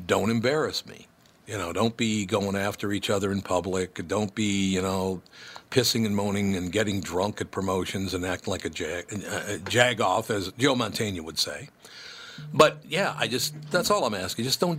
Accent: American